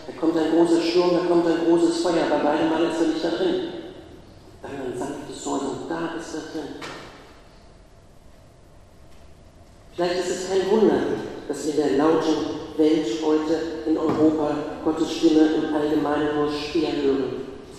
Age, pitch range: 50-69, 145-185 Hz